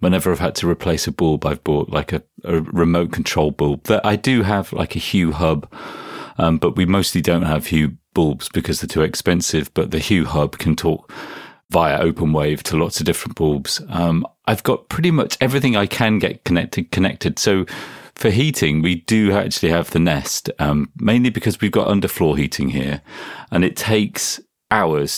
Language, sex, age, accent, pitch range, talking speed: English, male, 40-59, British, 80-100 Hz, 195 wpm